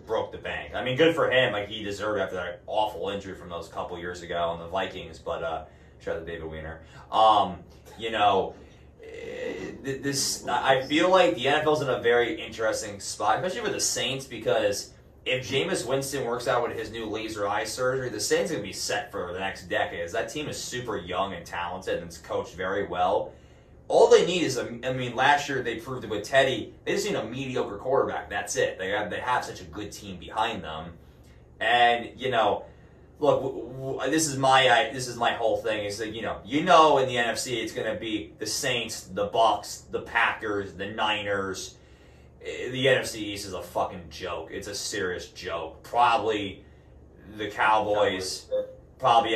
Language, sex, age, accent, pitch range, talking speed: English, male, 20-39, American, 95-135 Hz, 195 wpm